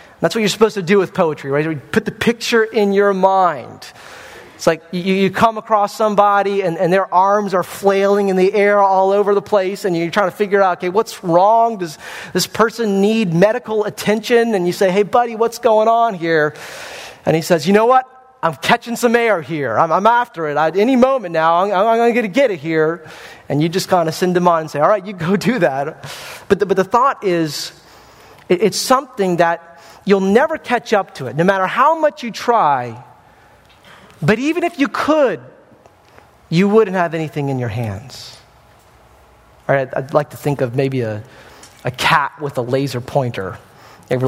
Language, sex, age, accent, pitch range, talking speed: English, male, 30-49, American, 145-210 Hz, 205 wpm